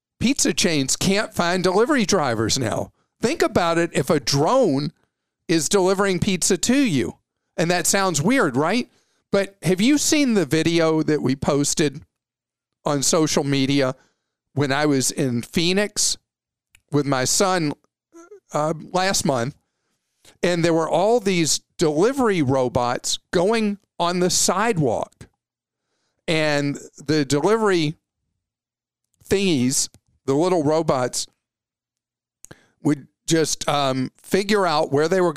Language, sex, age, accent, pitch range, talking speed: English, male, 50-69, American, 140-185 Hz, 120 wpm